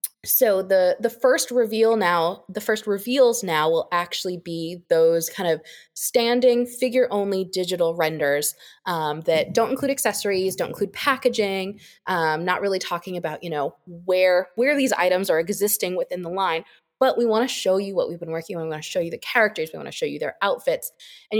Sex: female